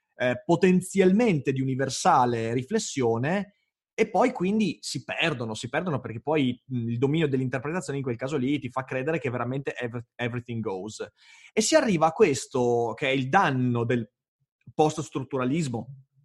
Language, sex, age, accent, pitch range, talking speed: Italian, male, 30-49, native, 130-200 Hz, 145 wpm